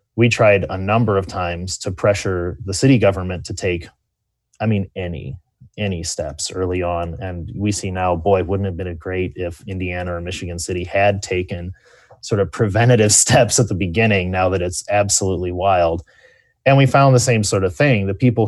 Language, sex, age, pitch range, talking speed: English, male, 30-49, 90-110 Hz, 195 wpm